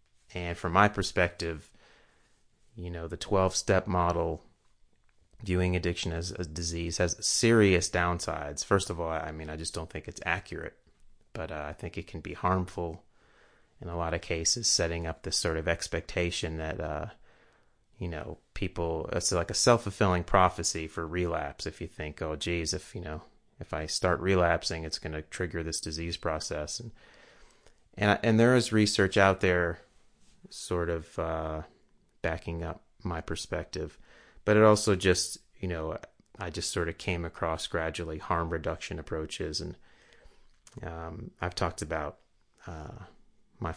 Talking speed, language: 160 wpm, English